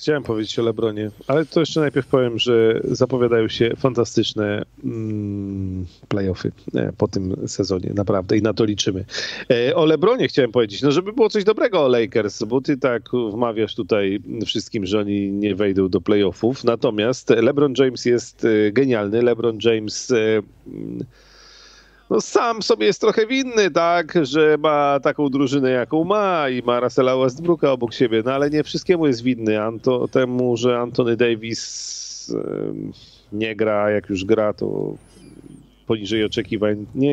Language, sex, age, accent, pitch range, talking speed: Polish, male, 40-59, native, 105-130 Hz, 150 wpm